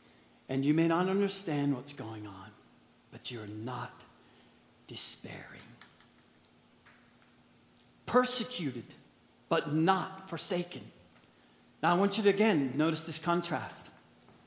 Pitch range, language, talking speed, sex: 165-275 Hz, English, 105 wpm, male